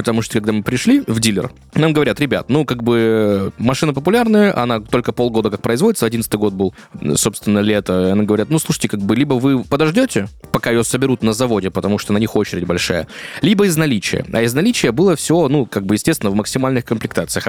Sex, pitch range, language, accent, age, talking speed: male, 105-145 Hz, Russian, native, 20-39, 210 wpm